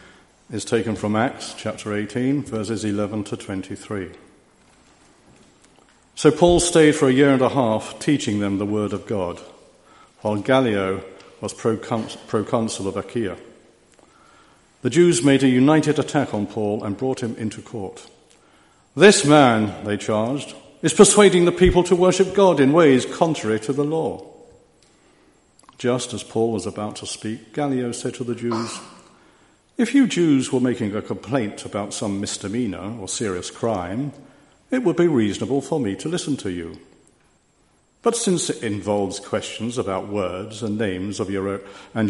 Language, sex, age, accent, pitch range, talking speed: English, male, 50-69, British, 105-145 Hz, 155 wpm